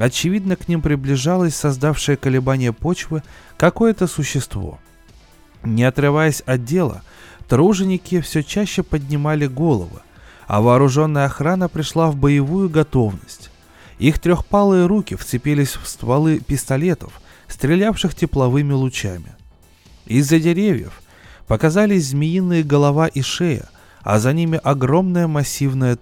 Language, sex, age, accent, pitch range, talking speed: Russian, male, 20-39, native, 115-170 Hz, 110 wpm